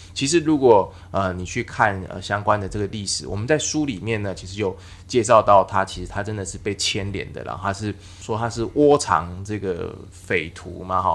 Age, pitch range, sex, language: 20-39, 90-105 Hz, male, Chinese